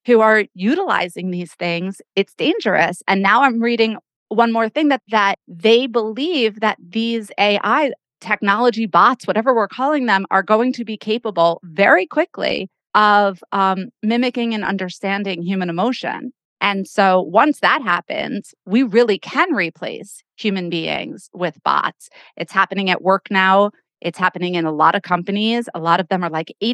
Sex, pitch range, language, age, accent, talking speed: female, 185-235 Hz, English, 30-49, American, 160 wpm